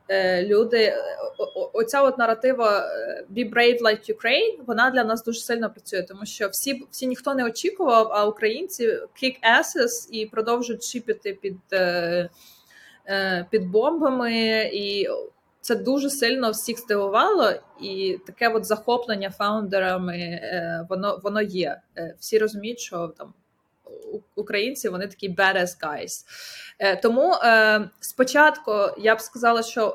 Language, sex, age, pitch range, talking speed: Ukrainian, female, 20-39, 195-245 Hz, 120 wpm